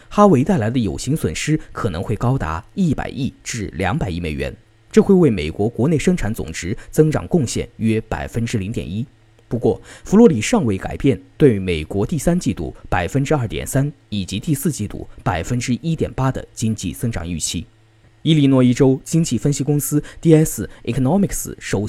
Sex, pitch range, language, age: male, 105-150 Hz, Chinese, 20-39